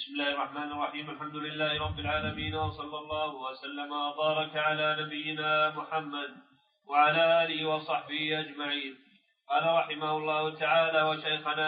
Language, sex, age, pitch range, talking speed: Arabic, male, 40-59, 155-170 Hz, 125 wpm